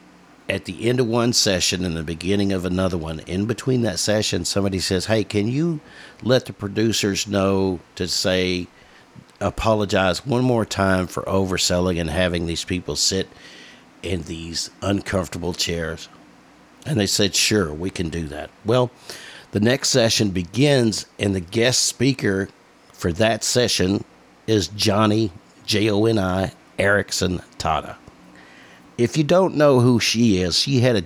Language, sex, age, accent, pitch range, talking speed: English, male, 50-69, American, 90-110 Hz, 150 wpm